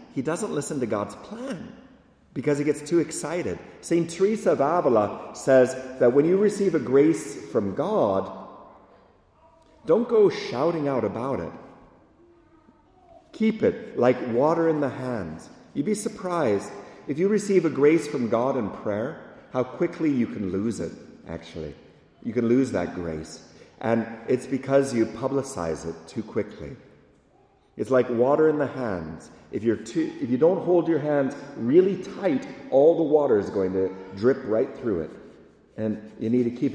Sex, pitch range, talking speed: male, 105-165 Hz, 165 wpm